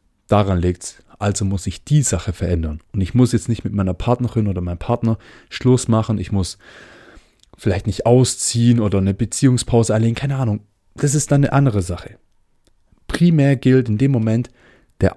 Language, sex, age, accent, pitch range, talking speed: German, male, 30-49, German, 100-125 Hz, 180 wpm